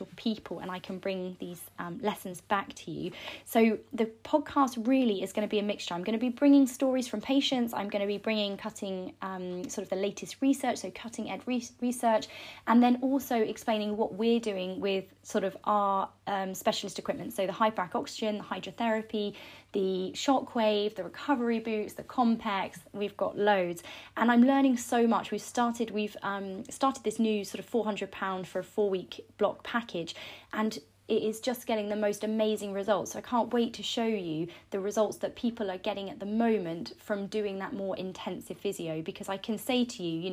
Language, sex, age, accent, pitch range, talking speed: English, female, 20-39, British, 195-235 Hz, 210 wpm